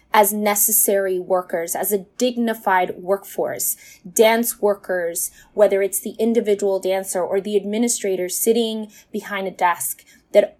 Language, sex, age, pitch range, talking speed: English, female, 20-39, 195-230 Hz, 125 wpm